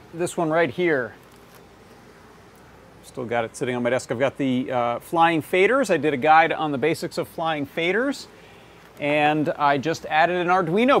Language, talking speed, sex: English, 180 wpm, male